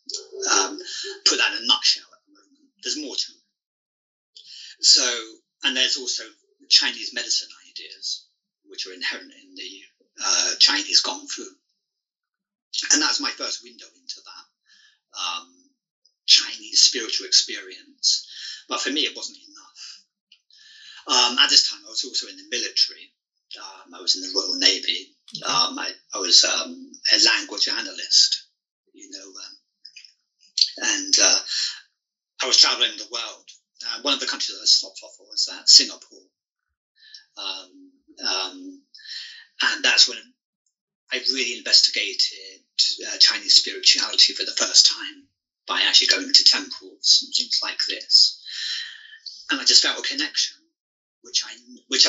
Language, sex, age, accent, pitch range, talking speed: English, male, 50-69, British, 285-420 Hz, 145 wpm